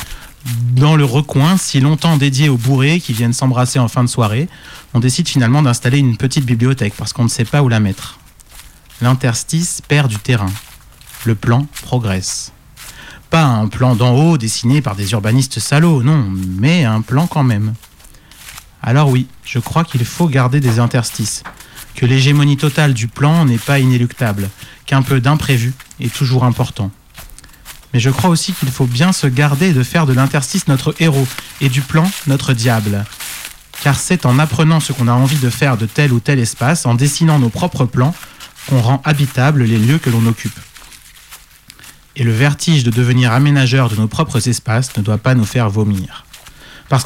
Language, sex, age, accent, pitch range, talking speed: French, male, 30-49, French, 120-145 Hz, 180 wpm